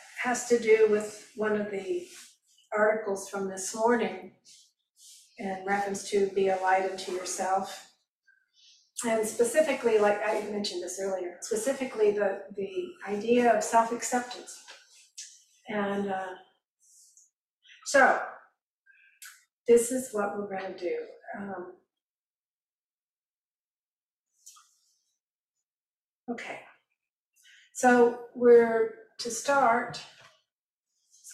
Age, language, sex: 50-69, English, female